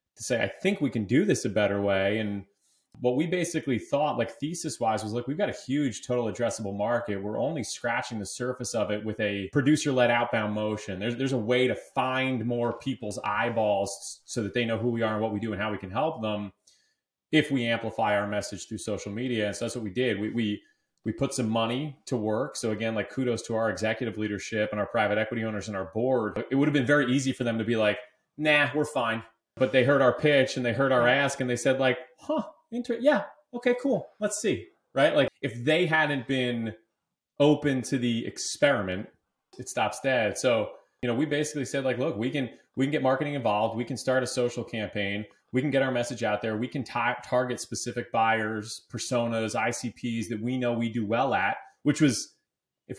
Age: 30-49